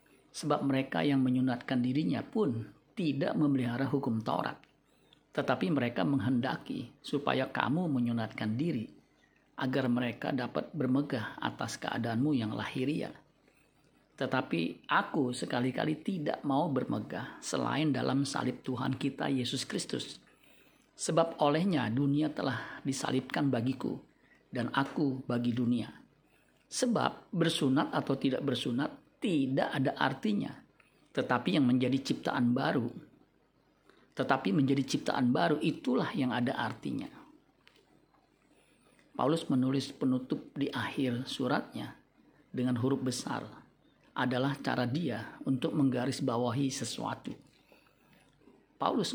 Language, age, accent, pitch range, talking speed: Indonesian, 50-69, native, 125-140 Hz, 105 wpm